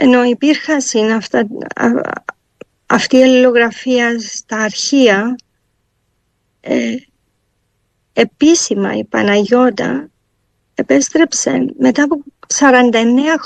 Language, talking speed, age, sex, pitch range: Greek, 60 wpm, 50-69, female, 205-260 Hz